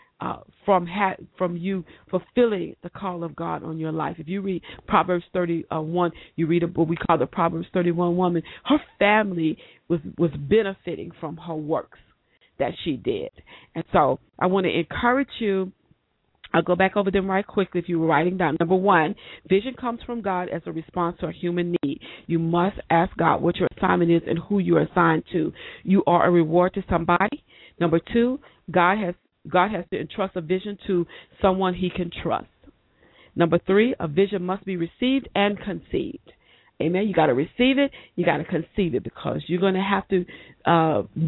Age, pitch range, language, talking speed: 40-59, 170-200 Hz, English, 190 wpm